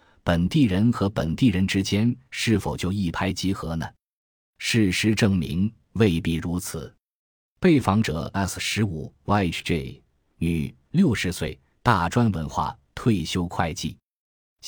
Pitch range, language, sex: 85-110 Hz, Chinese, male